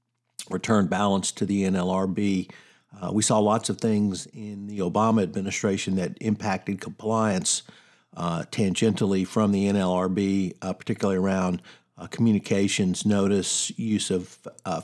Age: 50-69